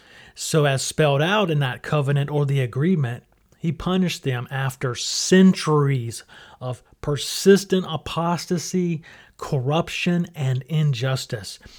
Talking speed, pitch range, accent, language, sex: 105 wpm, 135-165 Hz, American, English, male